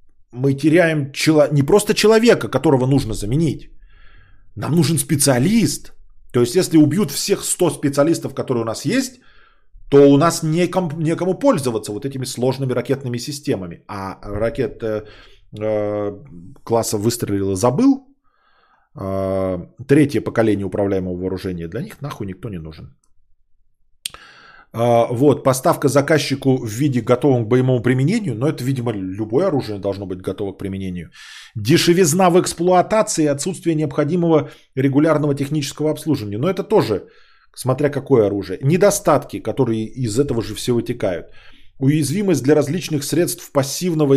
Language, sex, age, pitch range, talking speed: Bulgarian, male, 20-39, 110-155 Hz, 130 wpm